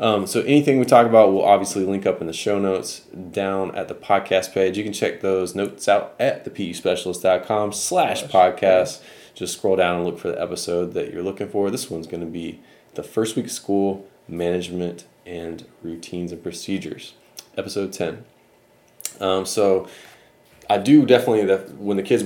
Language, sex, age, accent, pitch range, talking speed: English, male, 20-39, American, 90-100 Hz, 180 wpm